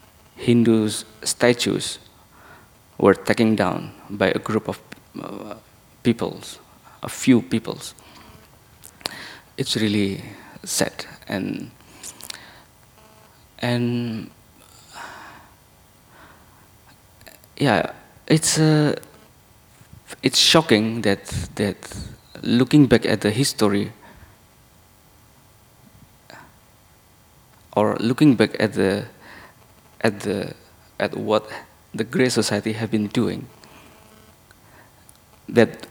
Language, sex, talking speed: German, male, 75 wpm